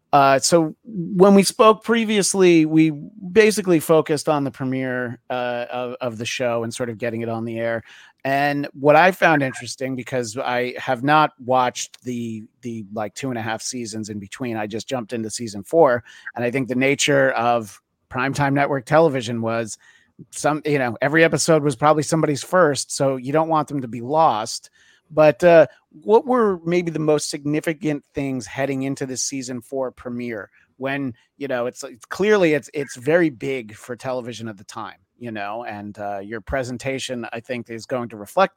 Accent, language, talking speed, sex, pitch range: American, English, 185 wpm, male, 120-155 Hz